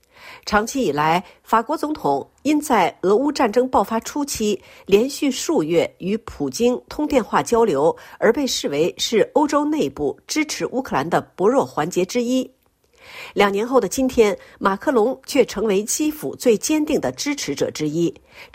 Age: 50-69